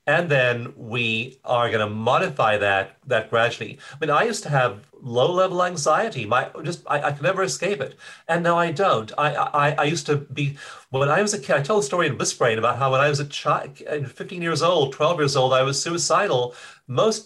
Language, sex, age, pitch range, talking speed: English, male, 40-59, 125-170 Hz, 220 wpm